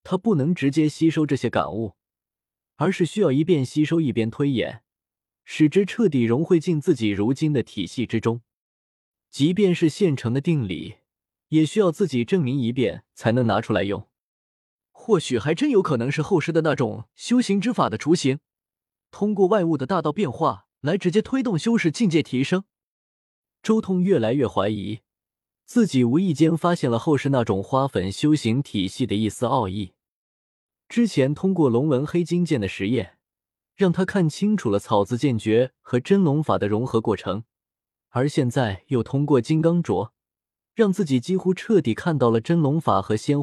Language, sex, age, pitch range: Chinese, male, 20-39, 110-170 Hz